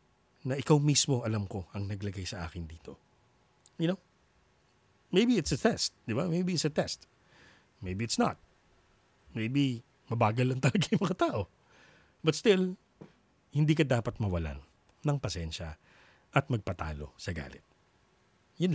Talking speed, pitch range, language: 145 wpm, 95-130 Hz, Filipino